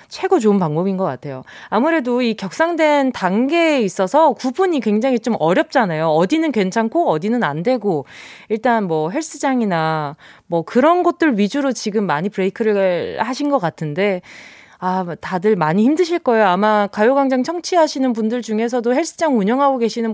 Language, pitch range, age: Korean, 195-285 Hz, 20-39